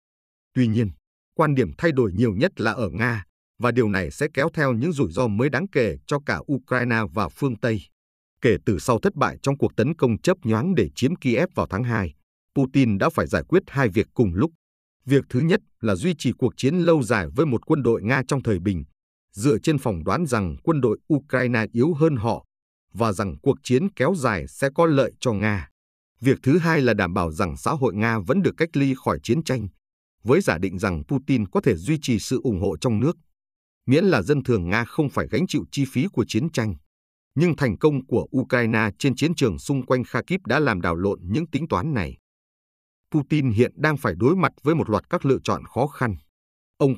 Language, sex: Vietnamese, male